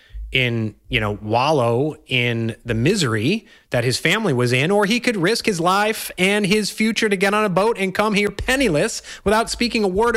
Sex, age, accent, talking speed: male, 30-49, American, 200 wpm